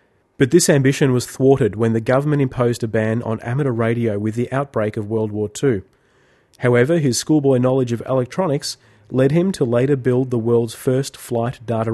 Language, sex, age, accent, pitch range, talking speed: English, male, 30-49, Australian, 115-140 Hz, 185 wpm